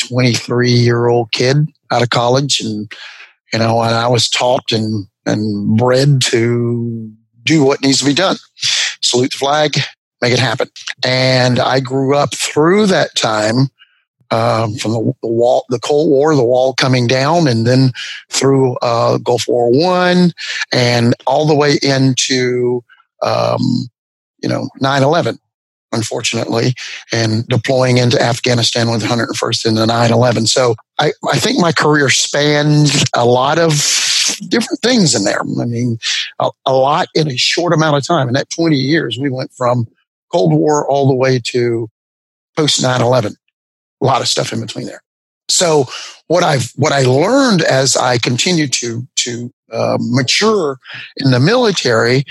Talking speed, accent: 160 wpm, American